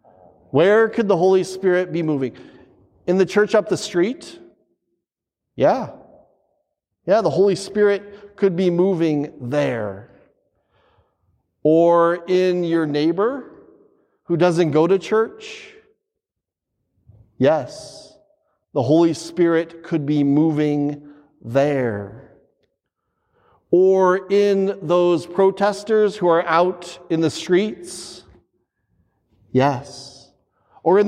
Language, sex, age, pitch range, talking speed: English, male, 40-59, 140-195 Hz, 100 wpm